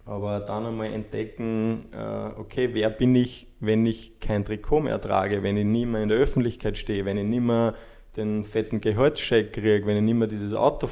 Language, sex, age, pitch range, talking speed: German, male, 20-39, 105-120 Hz, 200 wpm